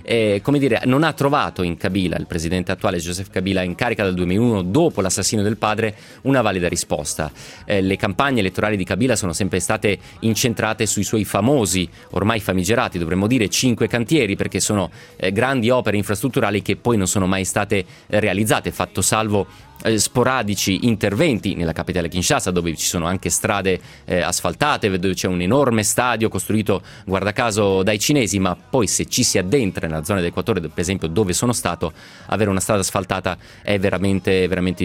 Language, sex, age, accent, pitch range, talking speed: Italian, male, 30-49, native, 95-125 Hz, 175 wpm